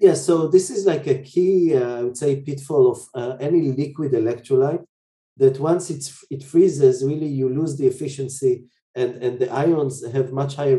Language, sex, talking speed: English, male, 190 wpm